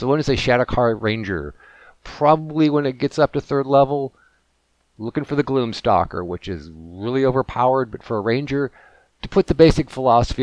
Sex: male